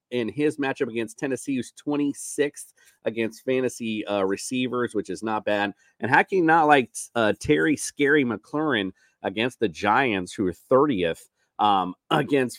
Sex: male